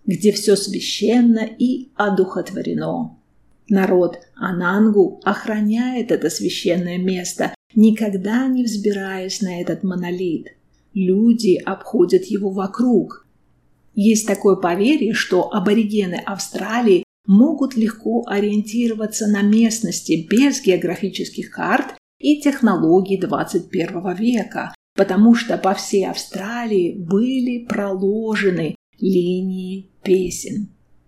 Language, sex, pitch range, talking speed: Russian, female, 185-220 Hz, 95 wpm